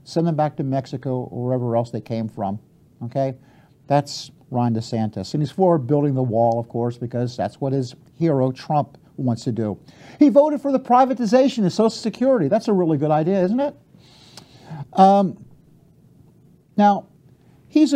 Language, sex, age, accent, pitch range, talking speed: English, male, 50-69, American, 130-175 Hz, 165 wpm